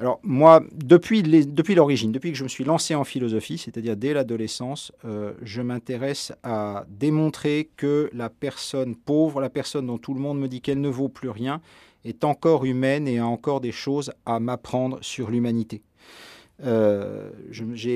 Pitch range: 110-140 Hz